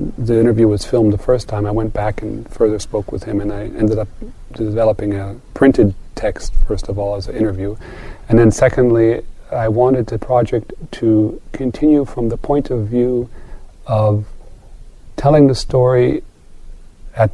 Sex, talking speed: male, 165 wpm